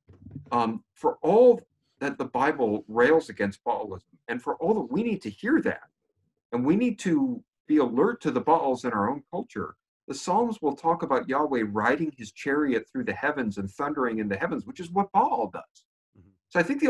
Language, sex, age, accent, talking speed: English, male, 50-69, American, 200 wpm